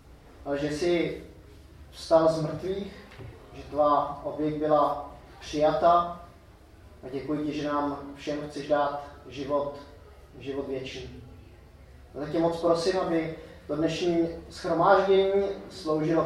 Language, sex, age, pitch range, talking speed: Czech, male, 20-39, 135-170 Hz, 105 wpm